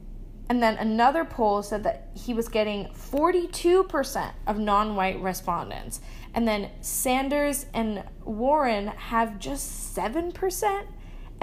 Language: English